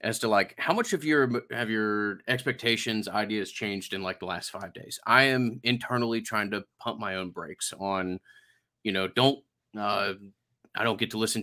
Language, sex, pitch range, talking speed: English, male, 95-115 Hz, 190 wpm